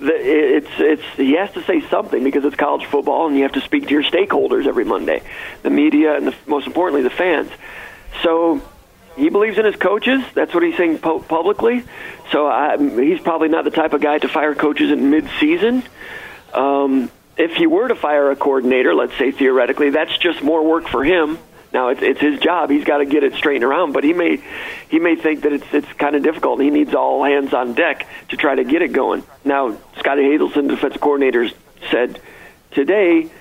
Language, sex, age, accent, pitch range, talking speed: English, male, 50-69, American, 145-195 Hz, 205 wpm